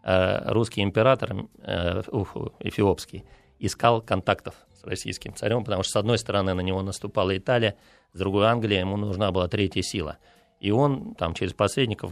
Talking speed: 155 wpm